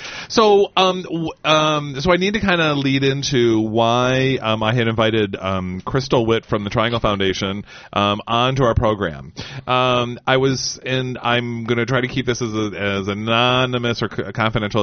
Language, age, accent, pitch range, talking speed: English, 30-49, American, 100-125 Hz, 185 wpm